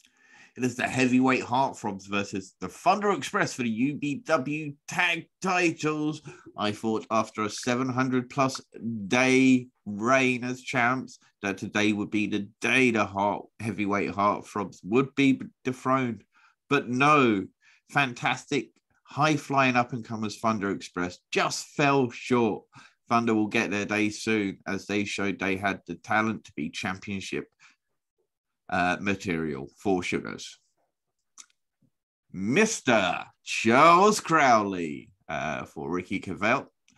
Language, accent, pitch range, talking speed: English, British, 100-130 Hz, 125 wpm